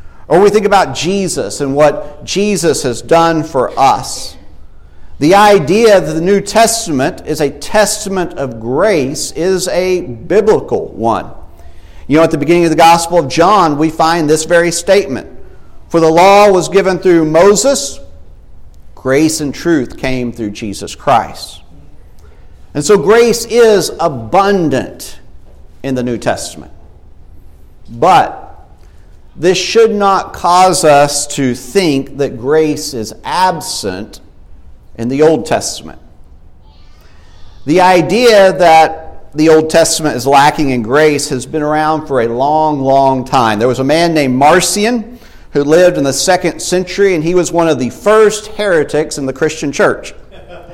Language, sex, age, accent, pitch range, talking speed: English, male, 50-69, American, 125-185 Hz, 145 wpm